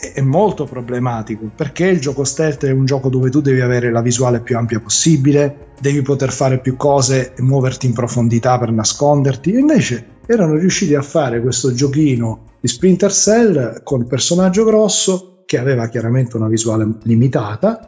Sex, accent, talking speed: male, native, 170 wpm